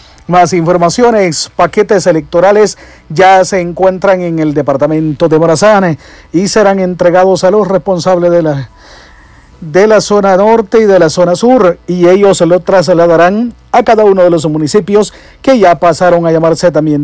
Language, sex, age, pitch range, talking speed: English, male, 50-69, 165-195 Hz, 160 wpm